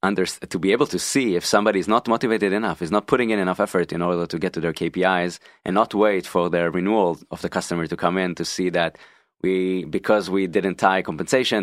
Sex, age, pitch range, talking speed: male, 20-39, 85-100 Hz, 235 wpm